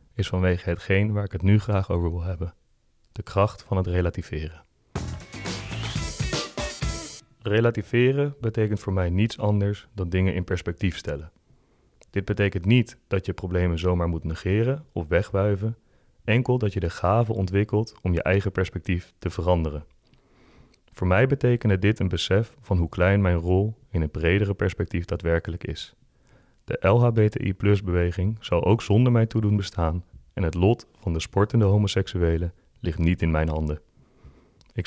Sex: male